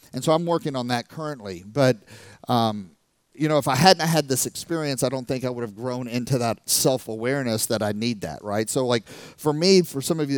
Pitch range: 115-155 Hz